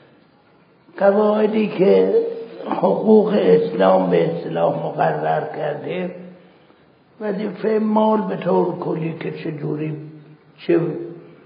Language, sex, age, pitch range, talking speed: Persian, male, 60-79, 160-210 Hz, 80 wpm